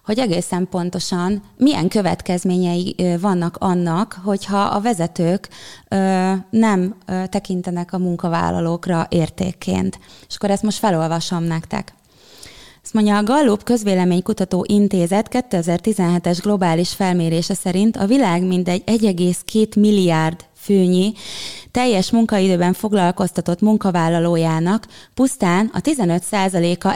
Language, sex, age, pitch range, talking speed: Hungarian, female, 20-39, 175-210 Hz, 100 wpm